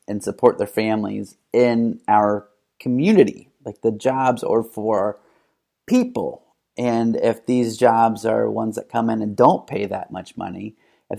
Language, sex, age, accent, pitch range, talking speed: English, male, 30-49, American, 105-125 Hz, 155 wpm